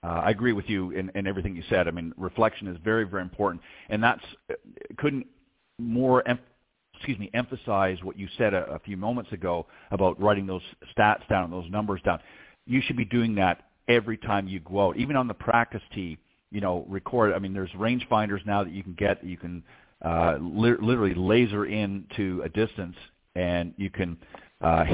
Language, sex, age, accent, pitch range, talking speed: English, male, 50-69, American, 95-115 Hz, 200 wpm